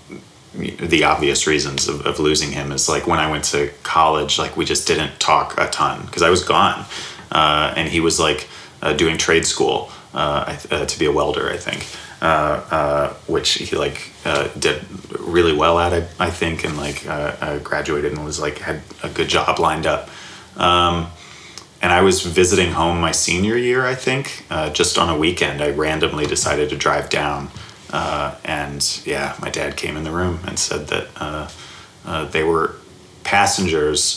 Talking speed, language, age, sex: 190 wpm, English, 30-49, male